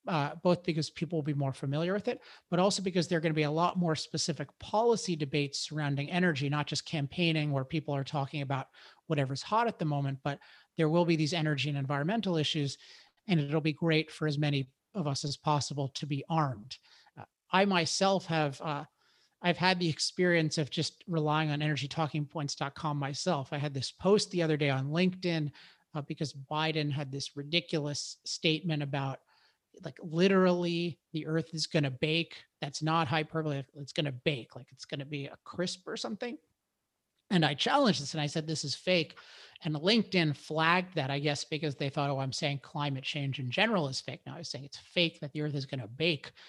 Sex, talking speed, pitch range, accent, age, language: male, 205 wpm, 145-170 Hz, American, 40-59, English